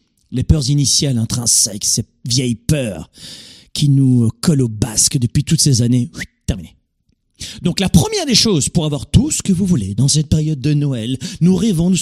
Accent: French